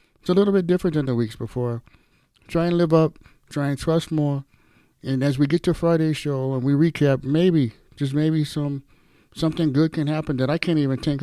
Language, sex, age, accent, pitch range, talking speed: English, male, 50-69, American, 120-150 Hz, 215 wpm